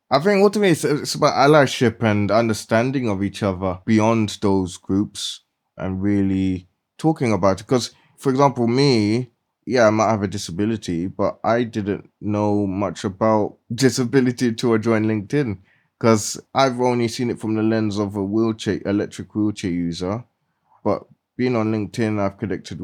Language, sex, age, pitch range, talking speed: English, male, 20-39, 95-115 Hz, 155 wpm